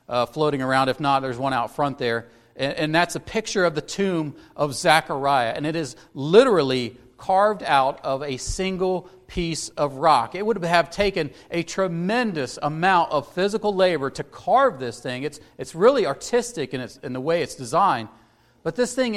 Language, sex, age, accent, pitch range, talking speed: English, male, 40-59, American, 145-195 Hz, 190 wpm